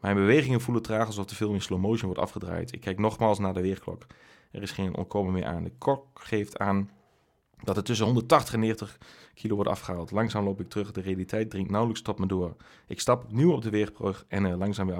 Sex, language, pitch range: male, Dutch, 95-115 Hz